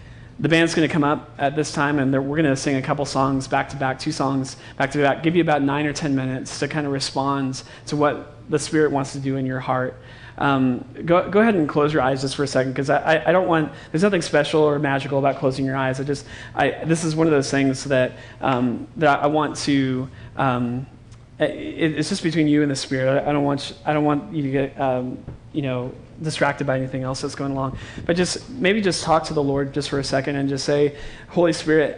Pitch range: 130-150 Hz